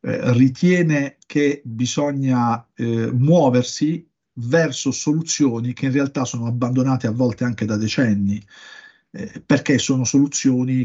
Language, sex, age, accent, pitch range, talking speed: Italian, male, 50-69, native, 115-135 Hz, 115 wpm